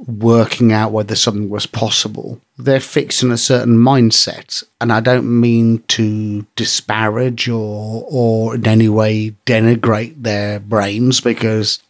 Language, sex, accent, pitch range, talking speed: English, male, British, 110-130 Hz, 130 wpm